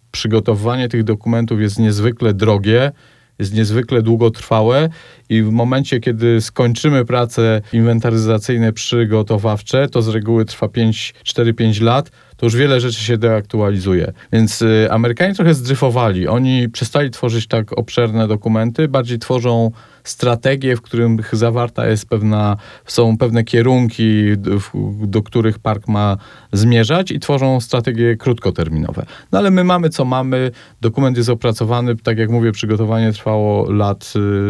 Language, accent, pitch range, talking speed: Polish, native, 110-135 Hz, 130 wpm